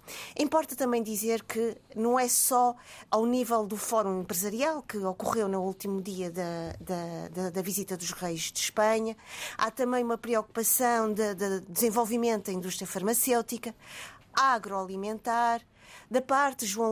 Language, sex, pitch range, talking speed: Portuguese, female, 200-235 Hz, 140 wpm